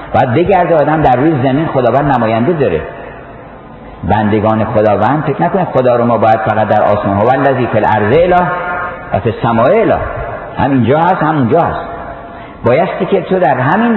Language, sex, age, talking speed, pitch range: Persian, male, 50-69, 155 wpm, 115-155 Hz